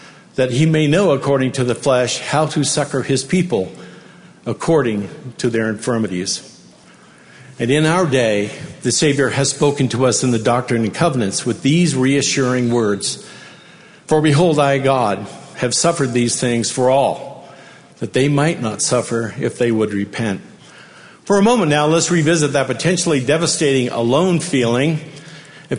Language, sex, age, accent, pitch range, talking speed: English, male, 50-69, American, 120-150 Hz, 155 wpm